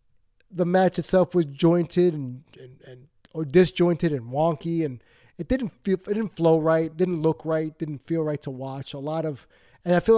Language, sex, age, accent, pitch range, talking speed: English, male, 30-49, American, 145-175 Hz, 200 wpm